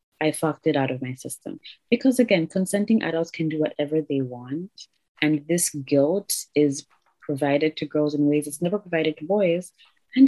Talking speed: 180 wpm